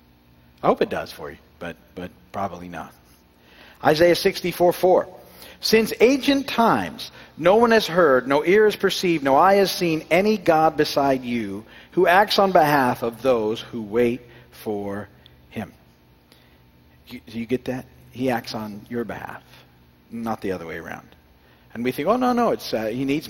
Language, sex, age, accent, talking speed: English, male, 50-69, American, 170 wpm